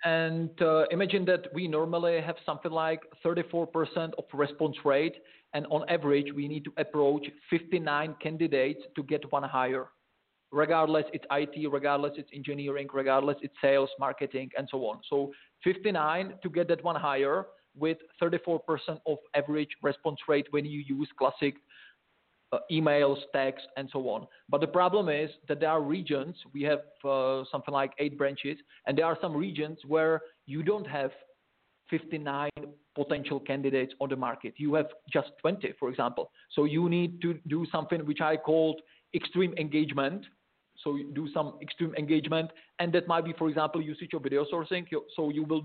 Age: 40-59